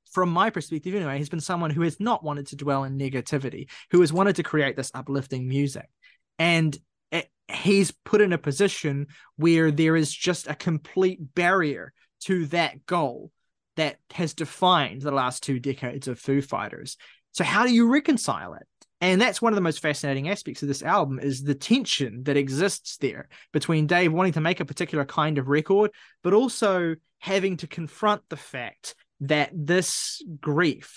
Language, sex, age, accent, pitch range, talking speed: English, male, 20-39, Australian, 145-180 Hz, 180 wpm